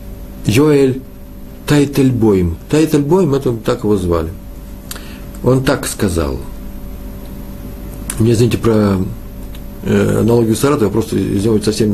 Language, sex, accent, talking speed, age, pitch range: Russian, male, native, 100 wpm, 50-69, 95-125 Hz